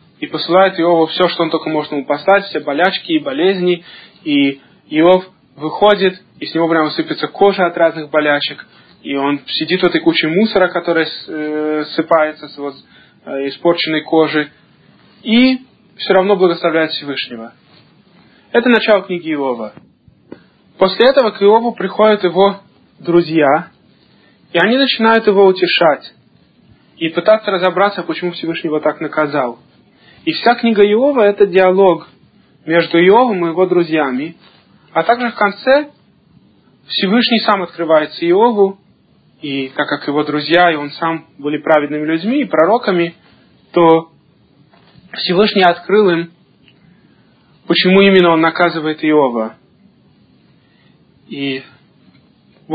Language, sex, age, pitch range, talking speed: Russian, male, 20-39, 155-200 Hz, 125 wpm